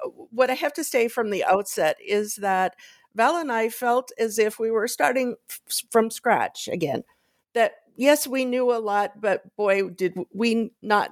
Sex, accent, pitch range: female, American, 185-255 Hz